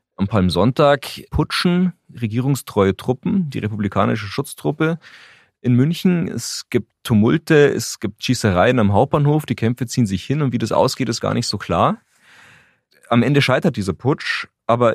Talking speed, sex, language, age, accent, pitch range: 155 wpm, male, German, 30-49, German, 95-130 Hz